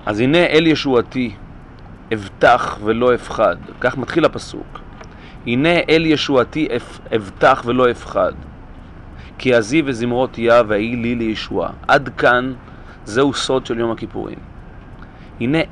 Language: Hebrew